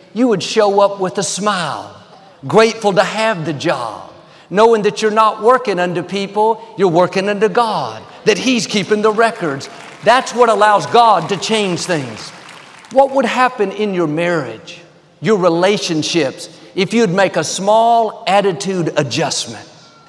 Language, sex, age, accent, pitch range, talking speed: English, male, 50-69, American, 170-210 Hz, 150 wpm